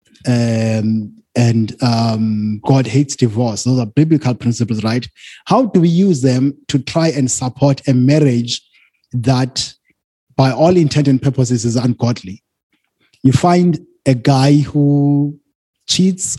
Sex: male